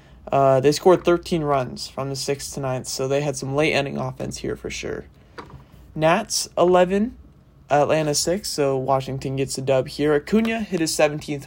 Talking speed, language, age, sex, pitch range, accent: 175 wpm, English, 20-39, male, 135-165 Hz, American